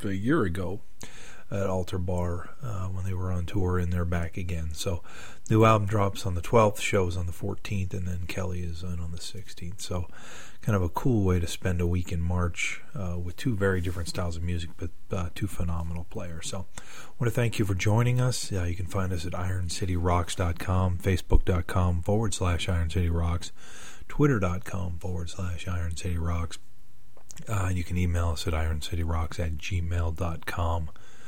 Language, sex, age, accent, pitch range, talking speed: English, male, 40-59, American, 85-100 Hz, 180 wpm